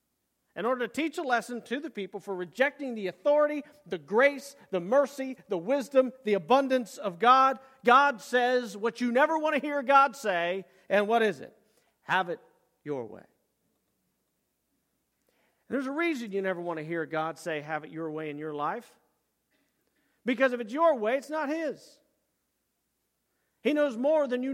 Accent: American